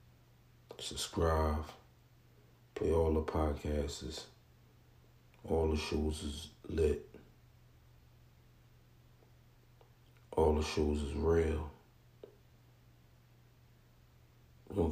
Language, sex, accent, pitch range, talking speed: English, male, American, 80-120 Hz, 65 wpm